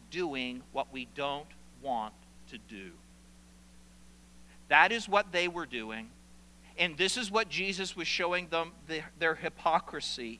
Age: 50-69